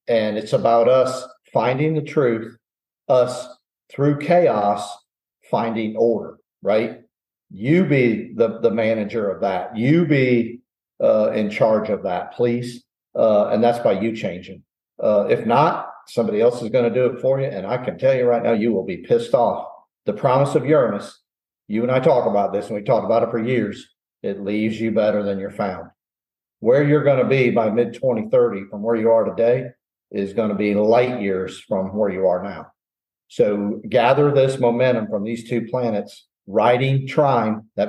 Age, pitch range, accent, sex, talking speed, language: 50-69, 105-130 Hz, American, male, 185 wpm, English